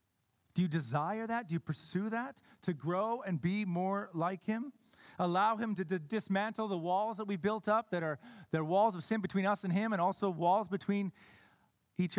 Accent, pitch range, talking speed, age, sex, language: American, 165-215 Hz, 195 wpm, 40-59, male, English